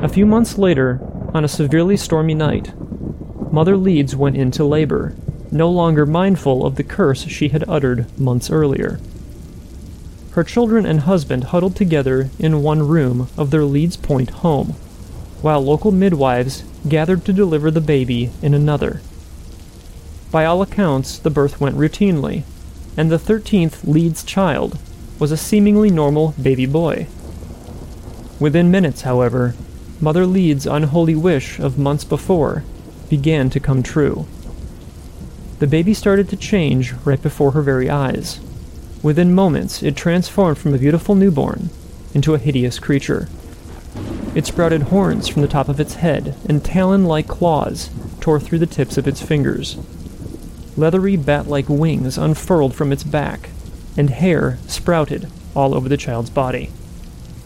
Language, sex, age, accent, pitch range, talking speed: English, male, 30-49, American, 130-165 Hz, 145 wpm